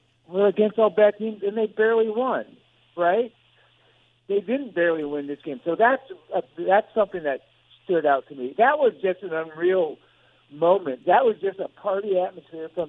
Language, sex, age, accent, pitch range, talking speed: English, male, 60-79, American, 140-205 Hz, 180 wpm